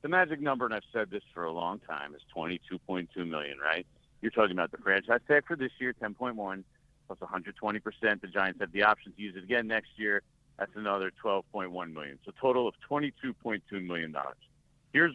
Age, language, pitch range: 50-69, English, 105-145 Hz